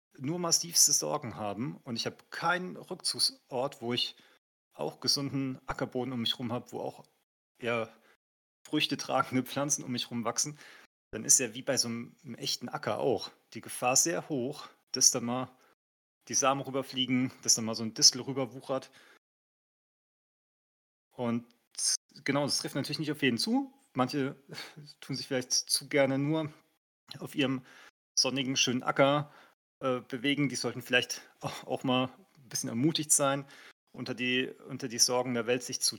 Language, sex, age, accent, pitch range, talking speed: German, male, 30-49, German, 115-140 Hz, 155 wpm